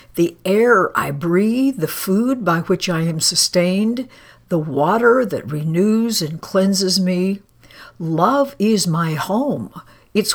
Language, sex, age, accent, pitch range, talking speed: English, female, 60-79, American, 160-215 Hz, 135 wpm